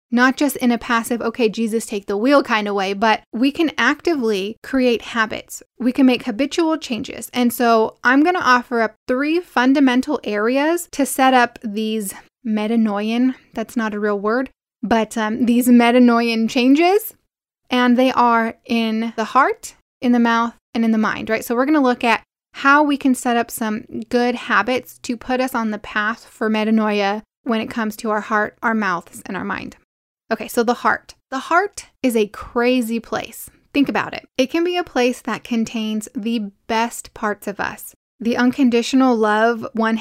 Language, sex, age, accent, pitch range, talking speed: English, female, 10-29, American, 220-260 Hz, 185 wpm